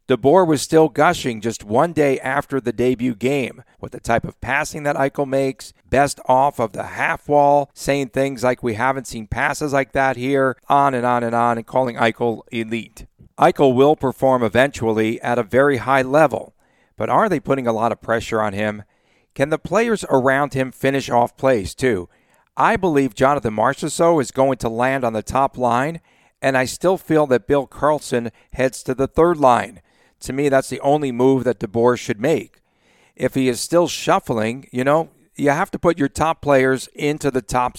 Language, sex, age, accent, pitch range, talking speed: English, male, 50-69, American, 120-140 Hz, 195 wpm